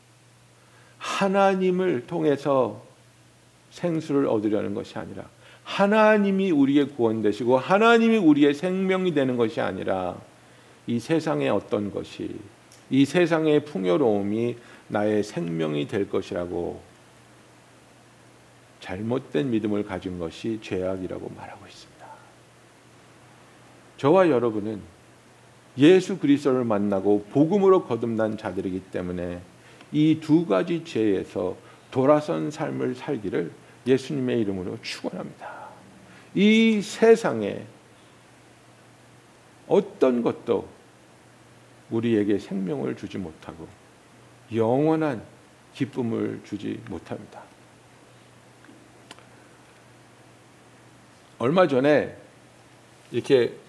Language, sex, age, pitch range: Korean, male, 50-69, 105-155 Hz